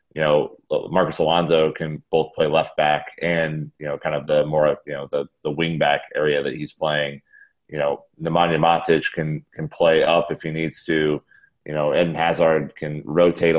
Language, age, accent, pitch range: English, 30-49, American, 75-80 Hz